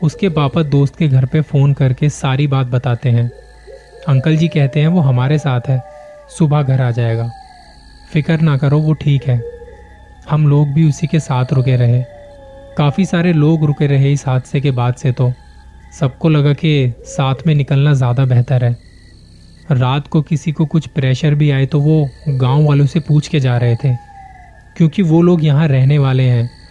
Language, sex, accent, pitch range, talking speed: Hindi, male, native, 125-150 Hz, 185 wpm